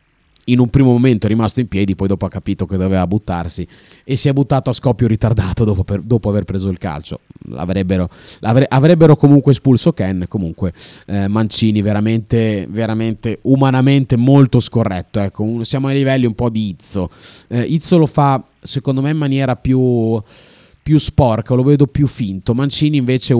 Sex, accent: male, native